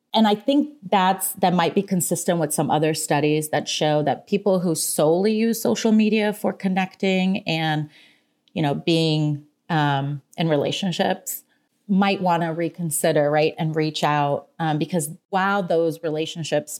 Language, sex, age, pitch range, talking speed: English, female, 30-49, 150-185 Hz, 155 wpm